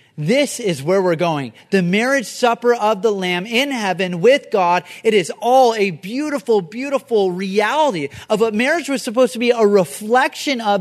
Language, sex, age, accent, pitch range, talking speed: English, male, 30-49, American, 170-240 Hz, 180 wpm